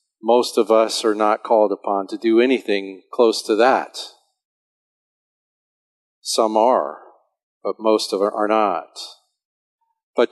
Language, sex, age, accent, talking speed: English, male, 40-59, American, 130 wpm